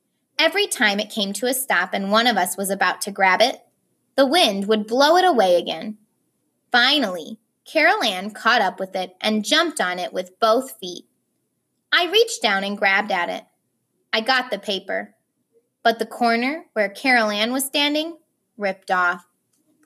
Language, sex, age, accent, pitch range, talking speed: English, female, 20-39, American, 200-255 Hz, 175 wpm